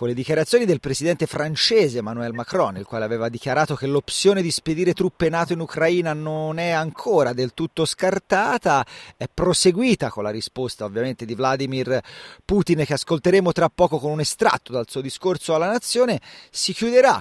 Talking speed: 170 wpm